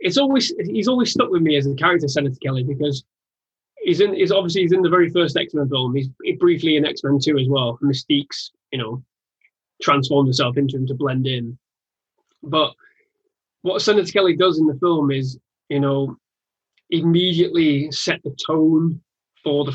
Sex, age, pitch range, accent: male, 20-39, 135-155 Hz, British